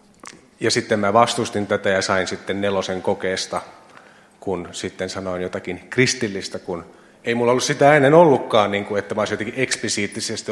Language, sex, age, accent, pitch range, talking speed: Finnish, male, 30-49, native, 100-115 Hz, 155 wpm